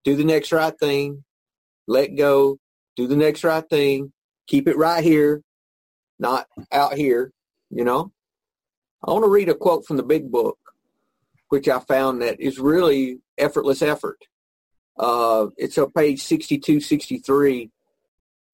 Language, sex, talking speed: English, male, 140 wpm